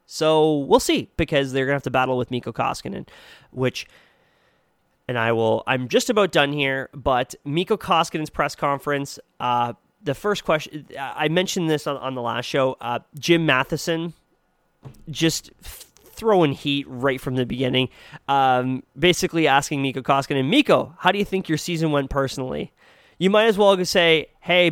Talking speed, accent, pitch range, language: 165 wpm, American, 135-170 Hz, English